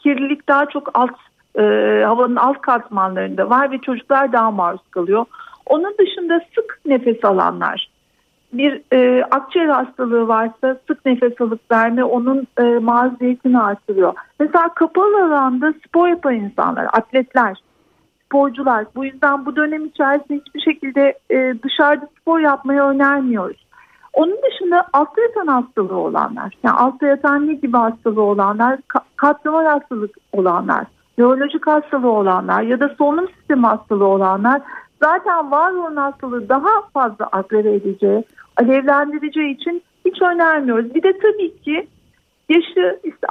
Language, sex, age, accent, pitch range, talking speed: Turkish, female, 50-69, native, 240-315 Hz, 130 wpm